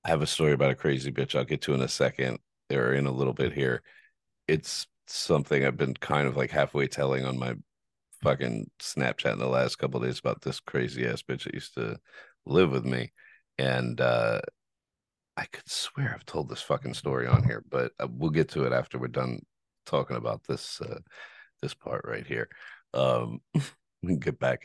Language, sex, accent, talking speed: English, male, American, 205 wpm